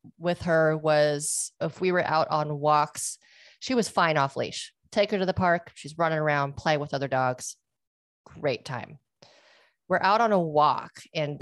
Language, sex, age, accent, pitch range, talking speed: English, female, 30-49, American, 140-175 Hz, 180 wpm